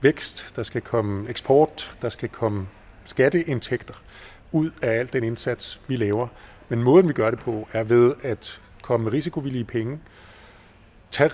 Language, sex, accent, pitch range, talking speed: Danish, male, native, 105-140 Hz, 170 wpm